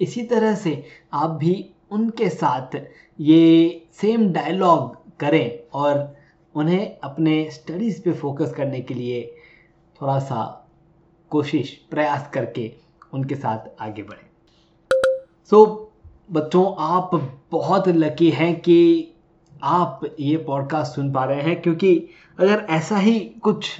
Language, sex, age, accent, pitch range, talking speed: Hindi, male, 20-39, native, 145-185 Hz, 125 wpm